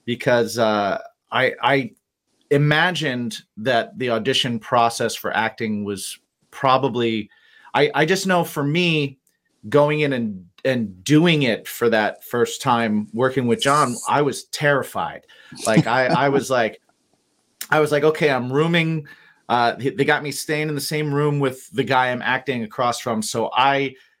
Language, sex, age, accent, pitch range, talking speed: English, male, 30-49, American, 125-165 Hz, 160 wpm